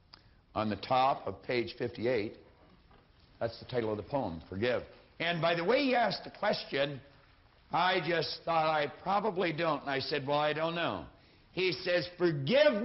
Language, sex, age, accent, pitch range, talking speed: English, male, 60-79, American, 95-150 Hz, 175 wpm